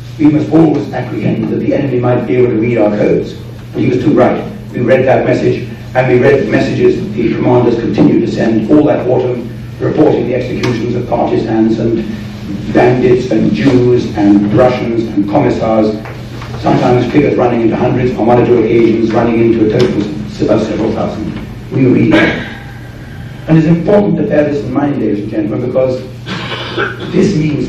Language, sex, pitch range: English, male, 110-135 Hz